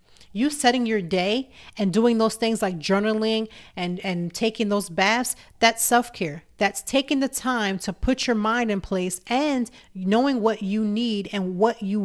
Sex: female